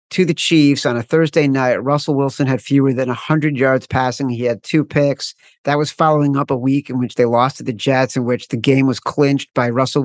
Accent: American